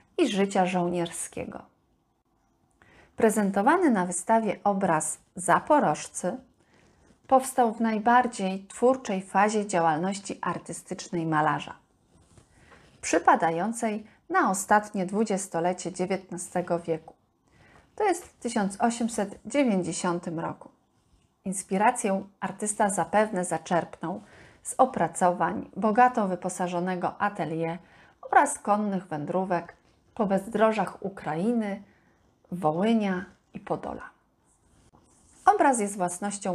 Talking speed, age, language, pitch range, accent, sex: 80 wpm, 40-59, Polish, 180-225 Hz, native, female